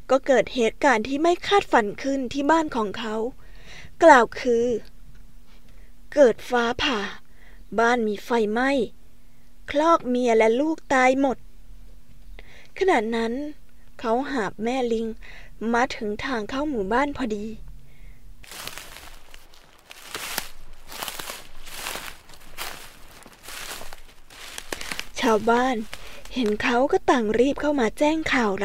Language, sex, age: Thai, female, 20-39